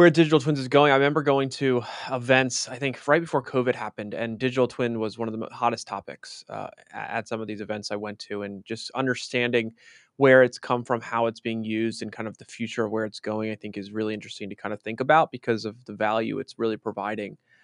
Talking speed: 240 wpm